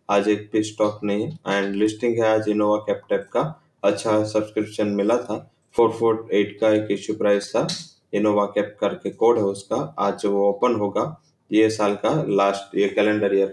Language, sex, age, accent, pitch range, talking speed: English, male, 20-39, Indian, 95-105 Hz, 170 wpm